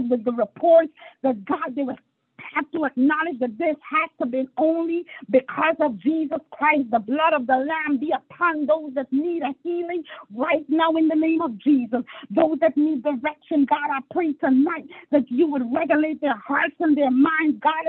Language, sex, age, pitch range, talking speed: English, female, 40-59, 260-320 Hz, 190 wpm